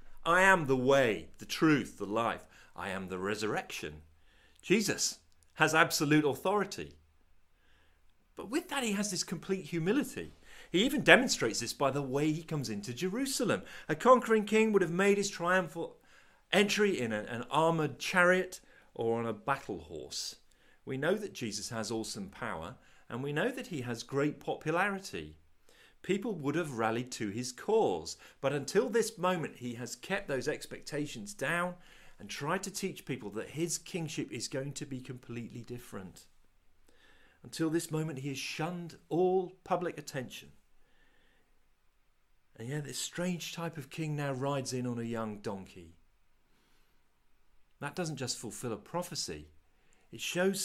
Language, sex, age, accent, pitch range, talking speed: English, male, 40-59, British, 110-180 Hz, 155 wpm